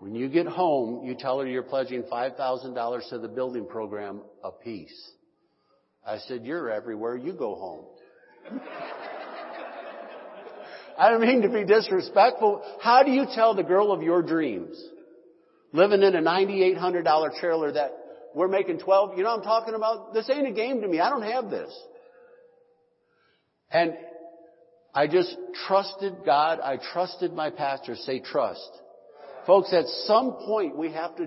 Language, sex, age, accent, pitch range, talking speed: English, male, 50-69, American, 155-225 Hz, 155 wpm